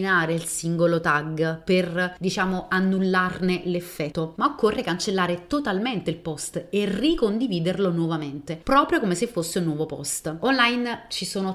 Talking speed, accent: 135 wpm, native